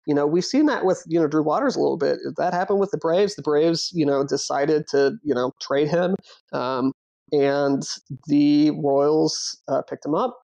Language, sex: English, male